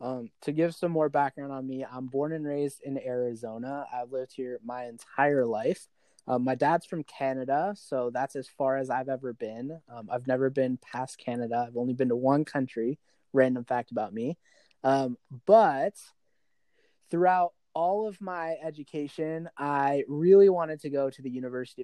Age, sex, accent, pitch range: 20-39, male, American, 125-150 Hz